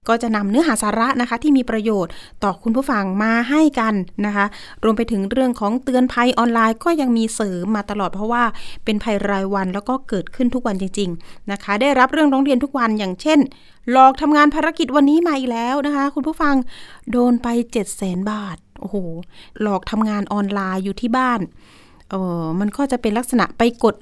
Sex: female